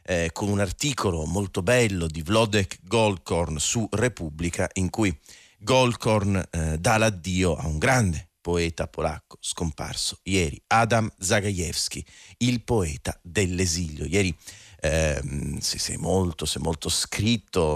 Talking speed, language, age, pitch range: 125 wpm, Italian, 40-59, 80-105 Hz